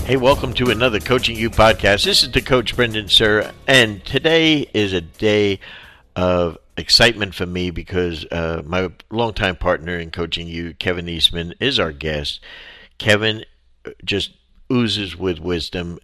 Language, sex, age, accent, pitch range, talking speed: English, male, 50-69, American, 80-100 Hz, 150 wpm